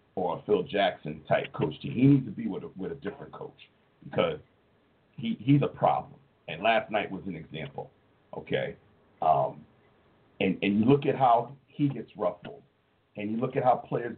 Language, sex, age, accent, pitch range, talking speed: English, male, 50-69, American, 115-150 Hz, 185 wpm